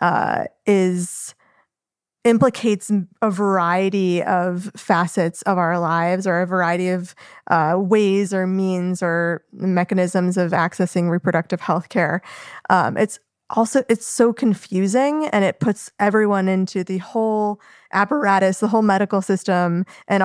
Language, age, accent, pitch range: English, 20-39, American, 180-200 Hz